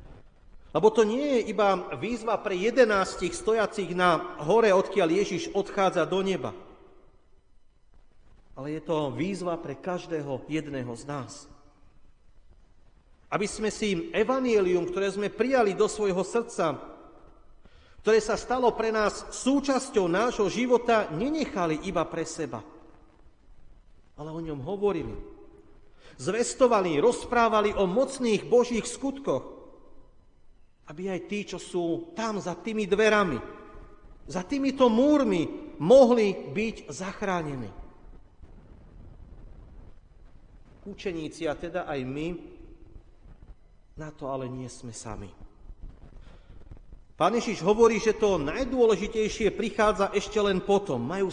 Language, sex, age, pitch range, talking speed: Slovak, male, 40-59, 165-220 Hz, 110 wpm